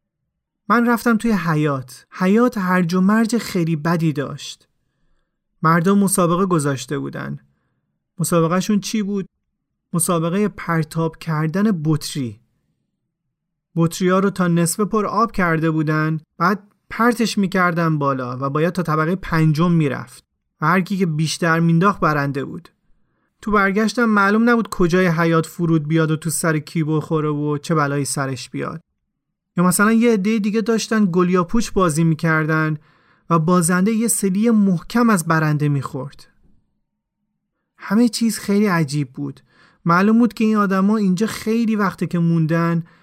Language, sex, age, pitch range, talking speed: Persian, male, 30-49, 160-205 Hz, 135 wpm